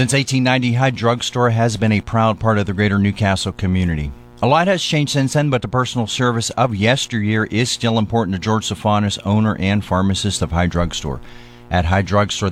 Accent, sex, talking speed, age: American, male, 195 wpm, 40-59